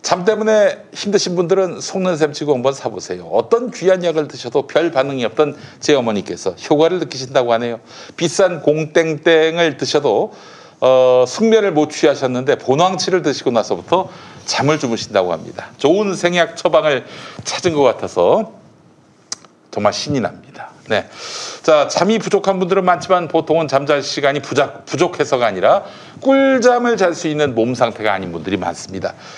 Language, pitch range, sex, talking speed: English, 145-195 Hz, male, 130 wpm